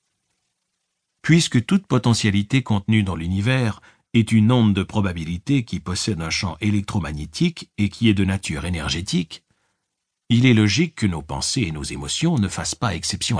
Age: 60-79